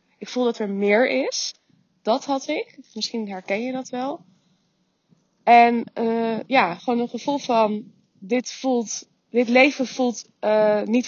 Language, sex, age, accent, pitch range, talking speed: Dutch, female, 20-39, Dutch, 195-245 Hz, 150 wpm